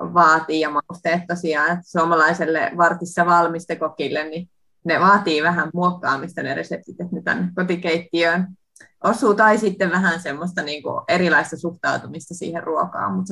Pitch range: 170-195 Hz